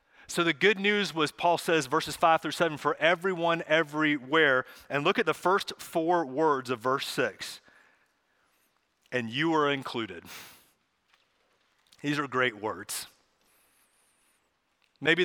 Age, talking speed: 30-49, 130 wpm